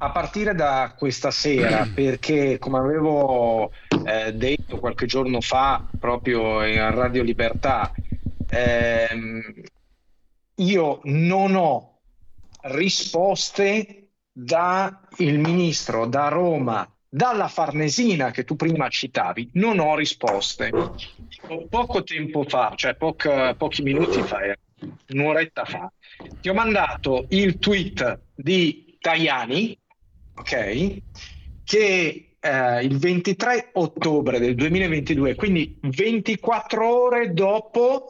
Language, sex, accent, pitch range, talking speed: Italian, male, native, 130-200 Hz, 100 wpm